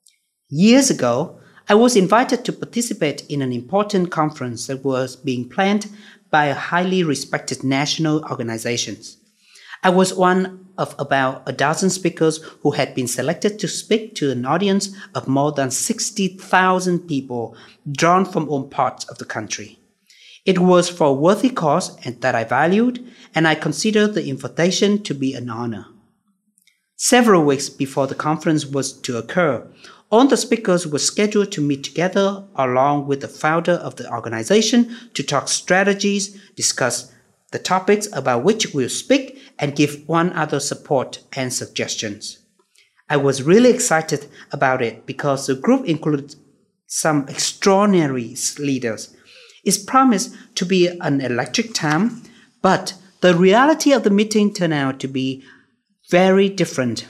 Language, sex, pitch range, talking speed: Vietnamese, male, 135-200 Hz, 150 wpm